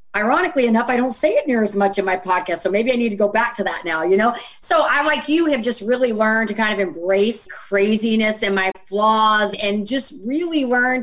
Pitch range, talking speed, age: 200-245 Hz, 240 wpm, 40-59